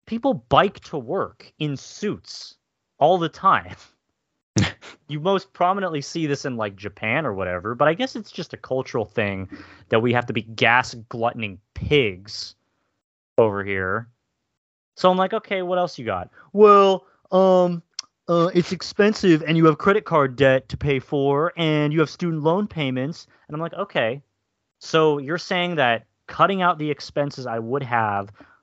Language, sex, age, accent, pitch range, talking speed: English, male, 30-49, American, 115-175 Hz, 165 wpm